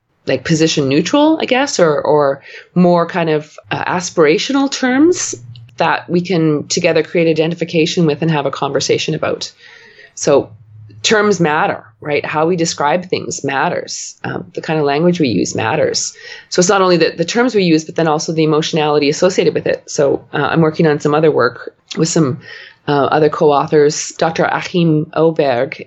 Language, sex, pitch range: English, female, 145-175 Hz